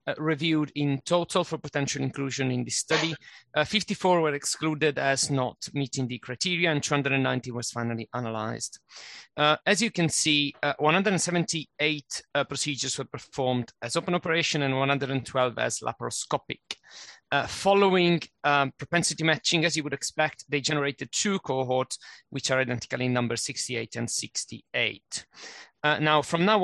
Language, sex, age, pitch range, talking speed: English, male, 30-49, 130-165 Hz, 150 wpm